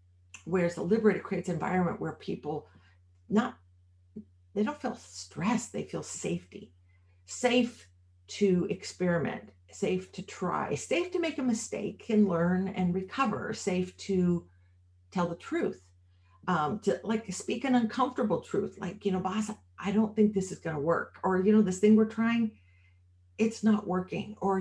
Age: 50-69